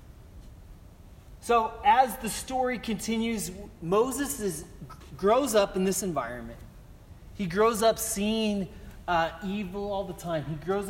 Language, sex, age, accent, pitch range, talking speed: English, male, 30-49, American, 180-230 Hz, 120 wpm